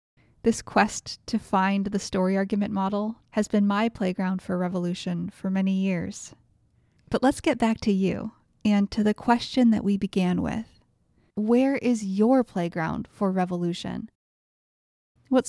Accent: American